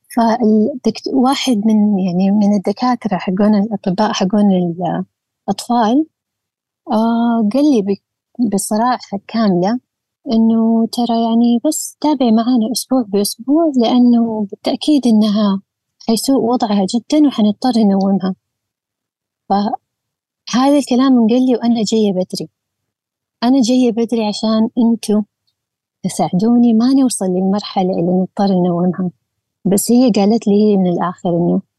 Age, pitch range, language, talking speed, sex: 30-49, 190-235 Hz, Arabic, 105 wpm, female